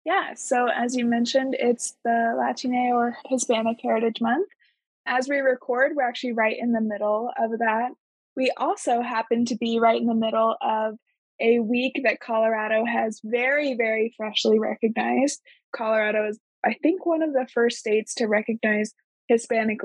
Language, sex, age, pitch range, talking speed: English, female, 20-39, 230-265 Hz, 165 wpm